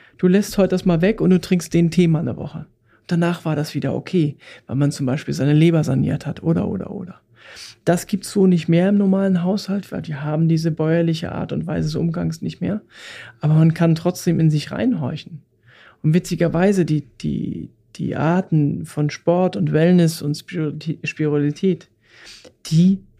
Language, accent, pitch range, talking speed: German, German, 150-180 Hz, 185 wpm